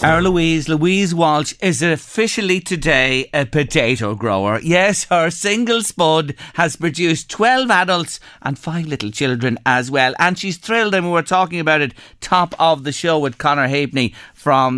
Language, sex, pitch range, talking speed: English, male, 120-185 Hz, 165 wpm